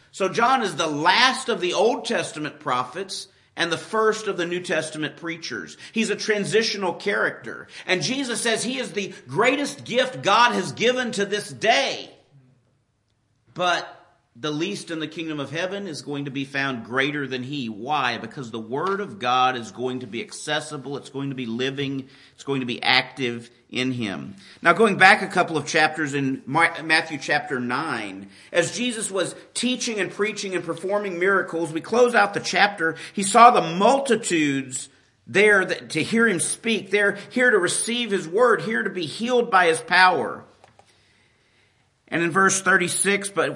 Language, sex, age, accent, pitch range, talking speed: English, male, 50-69, American, 140-200 Hz, 175 wpm